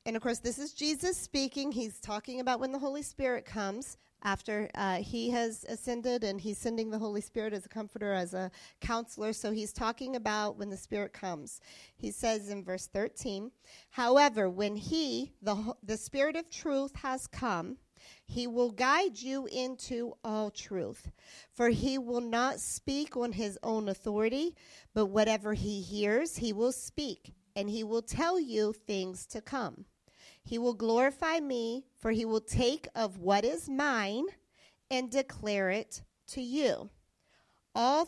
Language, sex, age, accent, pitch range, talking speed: English, female, 40-59, American, 215-275 Hz, 165 wpm